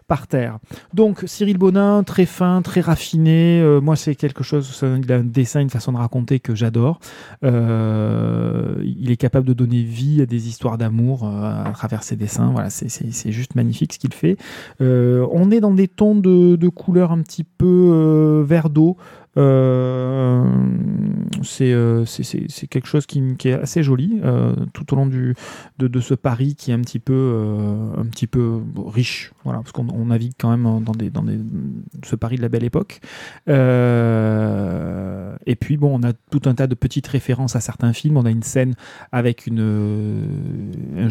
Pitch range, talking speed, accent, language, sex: 115-145 Hz, 195 wpm, French, French, male